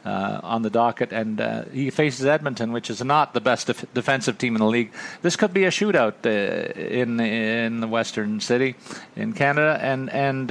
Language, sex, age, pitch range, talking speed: English, male, 40-59, 115-145 Hz, 195 wpm